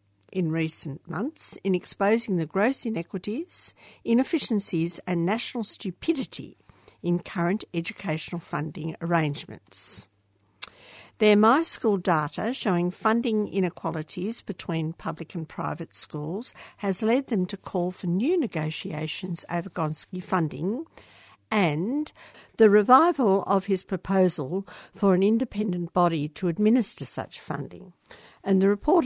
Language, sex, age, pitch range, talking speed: English, female, 60-79, 160-215 Hz, 115 wpm